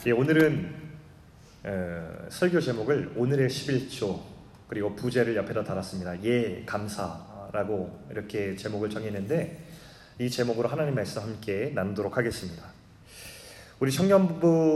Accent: native